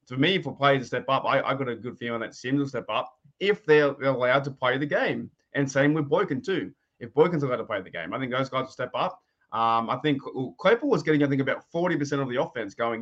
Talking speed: 275 wpm